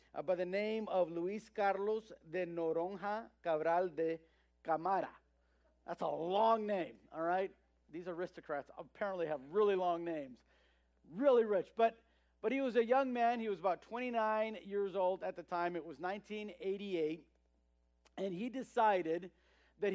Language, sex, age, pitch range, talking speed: English, male, 50-69, 160-200 Hz, 150 wpm